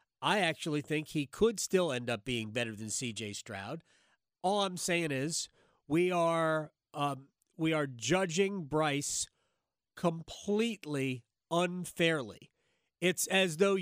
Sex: male